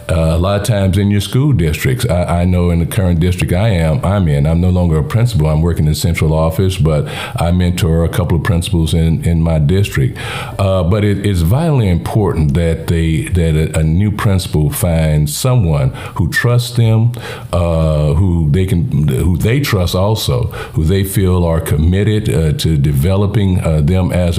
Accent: American